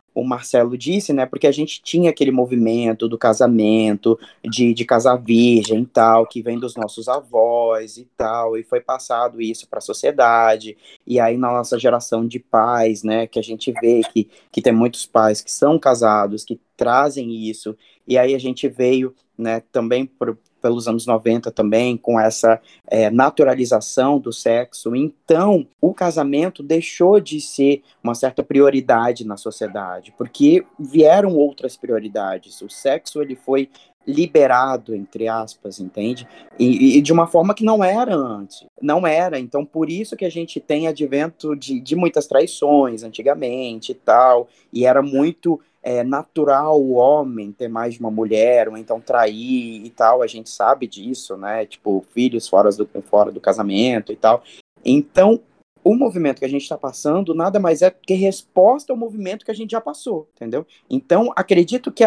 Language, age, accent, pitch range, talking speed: Portuguese, 20-39, Brazilian, 115-155 Hz, 170 wpm